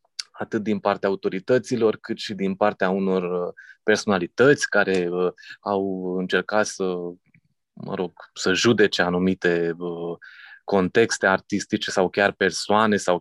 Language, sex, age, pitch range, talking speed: Romanian, male, 20-39, 90-110 Hz, 125 wpm